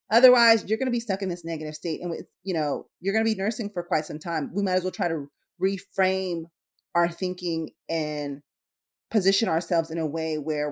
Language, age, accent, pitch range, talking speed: English, 30-49, American, 155-195 Hz, 205 wpm